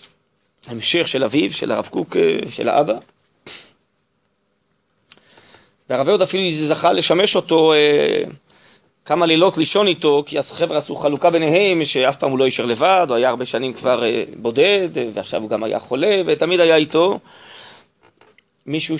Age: 30-49